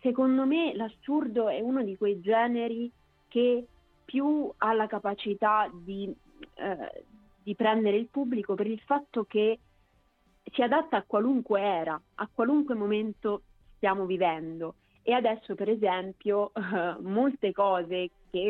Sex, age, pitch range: female, 30-49, 190-230 Hz